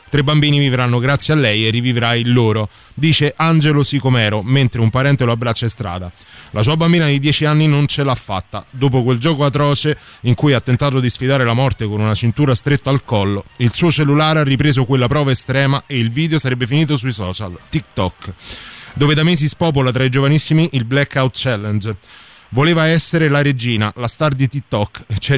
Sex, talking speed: male, 195 wpm